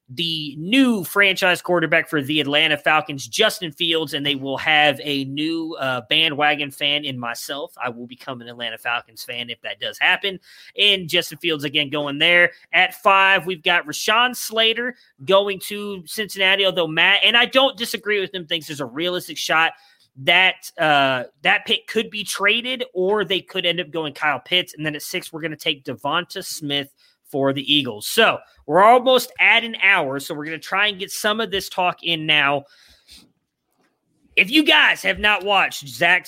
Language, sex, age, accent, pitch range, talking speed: English, male, 30-49, American, 150-190 Hz, 190 wpm